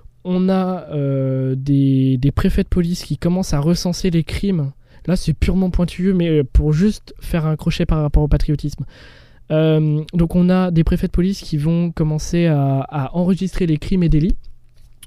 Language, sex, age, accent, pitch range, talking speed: French, male, 20-39, French, 140-180 Hz, 185 wpm